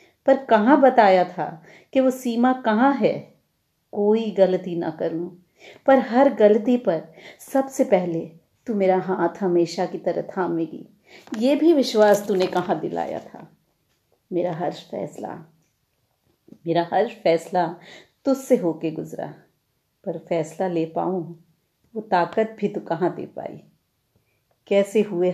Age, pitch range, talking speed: 40-59, 170-215 Hz, 130 wpm